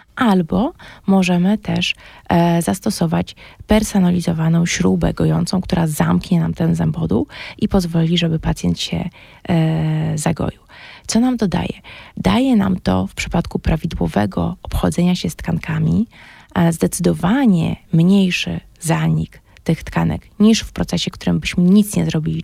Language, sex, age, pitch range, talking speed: Polish, female, 20-39, 160-195 Hz, 125 wpm